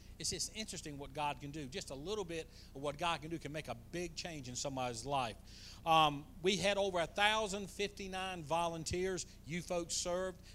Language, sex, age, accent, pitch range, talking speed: English, male, 40-59, American, 140-190 Hz, 190 wpm